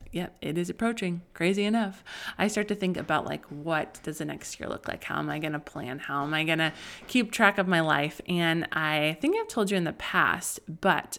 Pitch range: 165-220 Hz